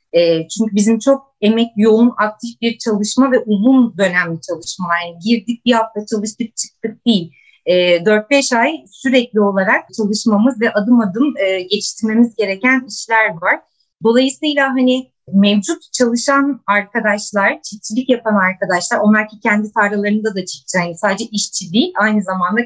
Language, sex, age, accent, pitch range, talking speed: Turkish, female, 30-49, native, 205-255 Hz, 130 wpm